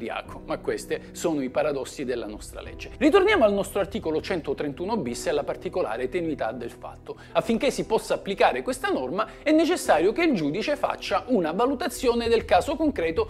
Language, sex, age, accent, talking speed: Italian, male, 50-69, native, 165 wpm